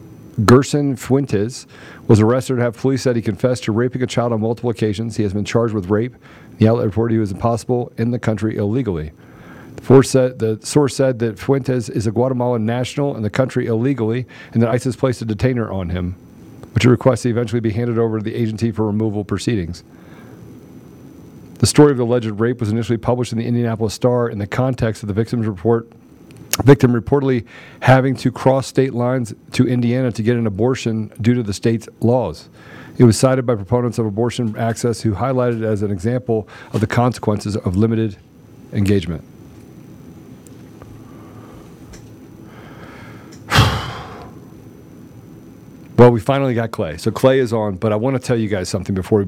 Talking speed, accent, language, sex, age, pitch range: 180 wpm, American, English, male, 50-69, 110-125 Hz